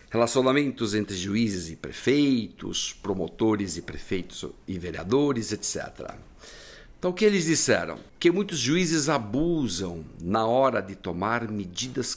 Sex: male